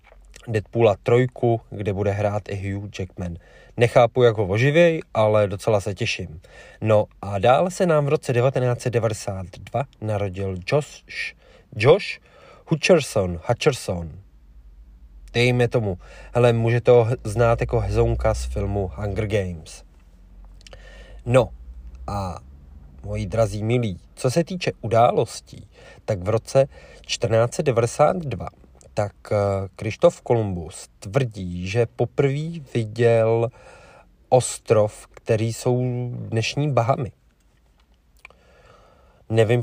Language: Czech